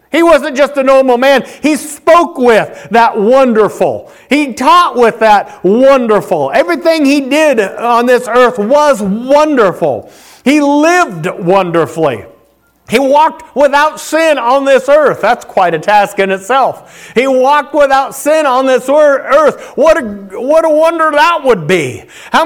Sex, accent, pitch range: male, American, 190-290 Hz